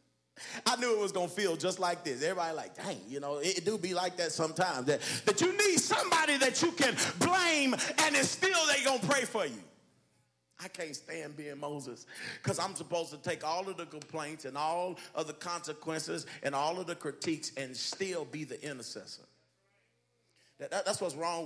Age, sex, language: 30-49, male, English